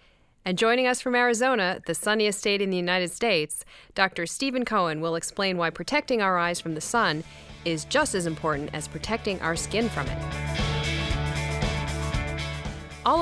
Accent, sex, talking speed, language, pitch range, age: American, female, 160 wpm, English, 160-235 Hz, 30-49